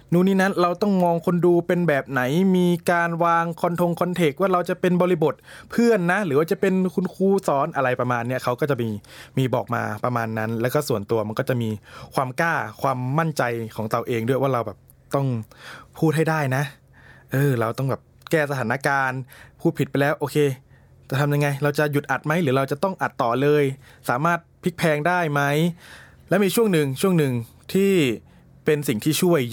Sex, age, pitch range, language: male, 20-39, 125-170 Hz, Thai